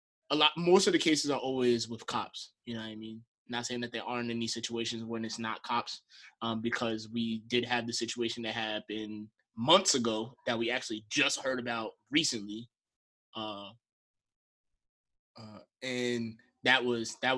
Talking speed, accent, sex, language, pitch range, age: 175 wpm, American, male, English, 110-130 Hz, 20-39